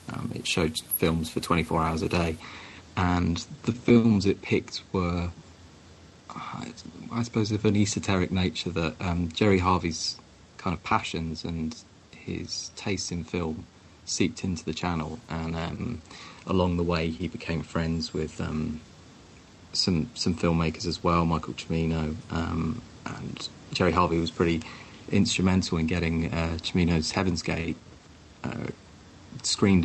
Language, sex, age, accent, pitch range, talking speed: English, male, 30-49, British, 80-95 Hz, 140 wpm